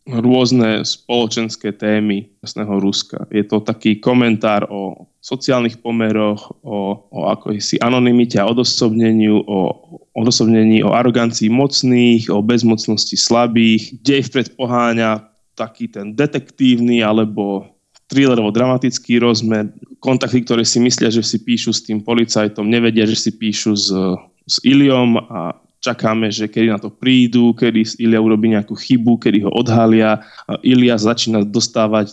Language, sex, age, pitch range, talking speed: Slovak, male, 20-39, 105-120 Hz, 140 wpm